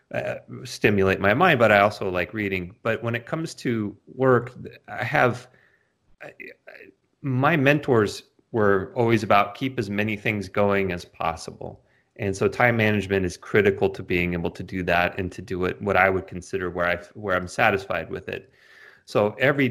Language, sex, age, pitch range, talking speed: English, male, 30-49, 90-105 Hz, 175 wpm